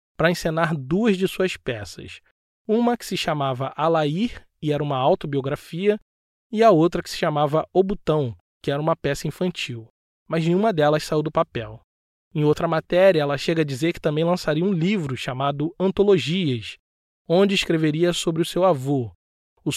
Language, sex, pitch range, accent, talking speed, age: Portuguese, male, 140-185 Hz, Brazilian, 165 wpm, 20-39